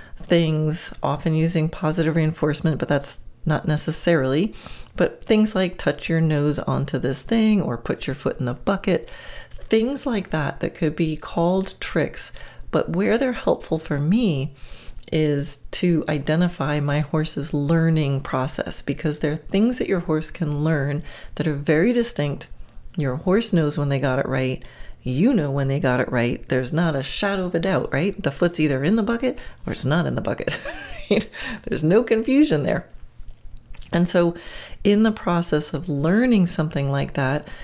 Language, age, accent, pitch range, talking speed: English, 40-59, American, 145-185 Hz, 170 wpm